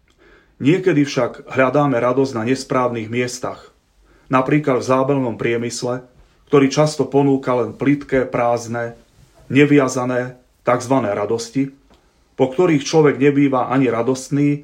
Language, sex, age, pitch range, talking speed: Slovak, male, 30-49, 120-145 Hz, 105 wpm